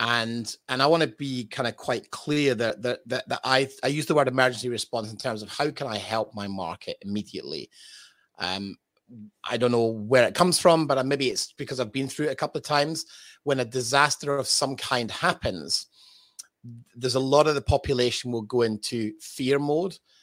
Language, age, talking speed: English, 30-49, 205 wpm